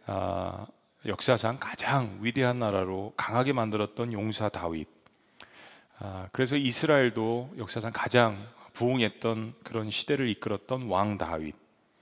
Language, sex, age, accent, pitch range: Korean, male, 40-59, native, 100-130 Hz